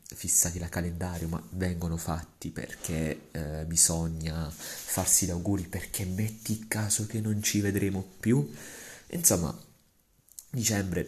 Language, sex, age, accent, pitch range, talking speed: Italian, male, 30-49, native, 80-95 Hz, 125 wpm